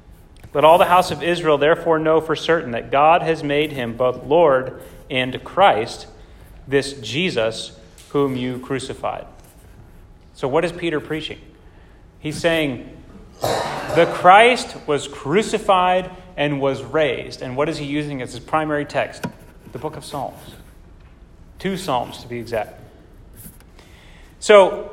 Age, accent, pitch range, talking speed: 30-49, American, 120-165 Hz, 135 wpm